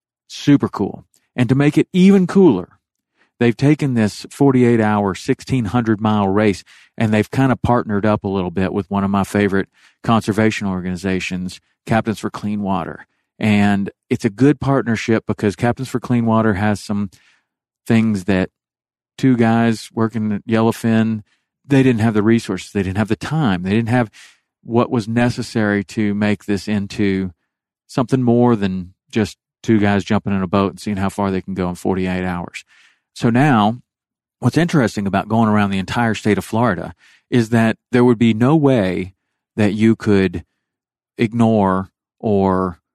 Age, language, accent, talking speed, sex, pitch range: 40-59, English, American, 170 wpm, male, 95-120 Hz